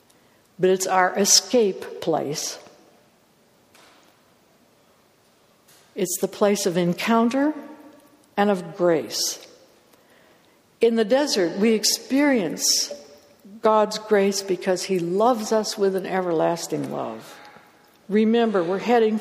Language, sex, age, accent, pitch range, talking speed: English, female, 60-79, American, 185-240 Hz, 95 wpm